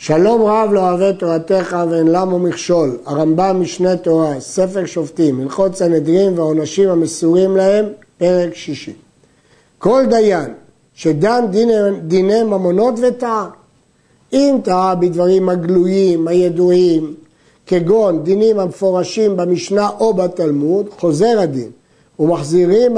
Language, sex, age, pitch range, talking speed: Hebrew, male, 50-69, 165-200 Hz, 105 wpm